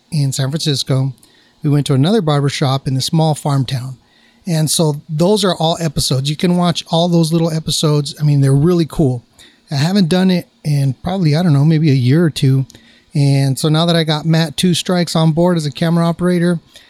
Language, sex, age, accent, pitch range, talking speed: English, male, 30-49, American, 140-175 Hz, 215 wpm